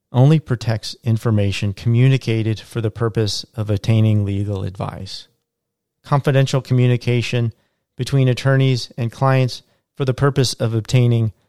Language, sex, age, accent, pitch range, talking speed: English, male, 40-59, American, 110-130 Hz, 115 wpm